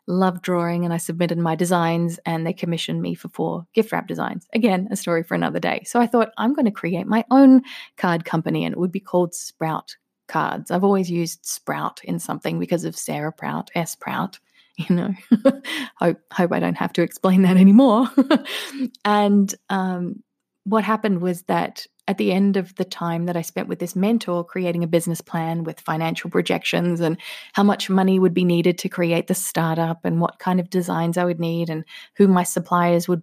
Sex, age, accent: female, 20-39, Australian